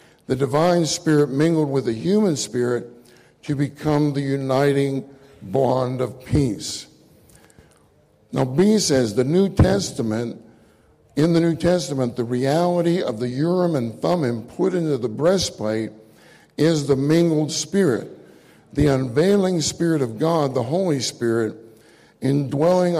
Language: English